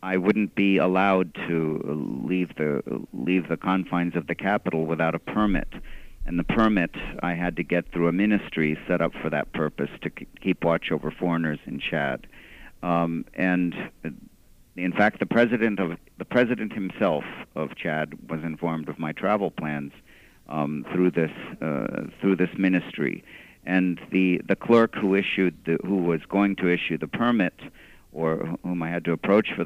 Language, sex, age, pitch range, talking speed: English, male, 50-69, 80-95 Hz, 170 wpm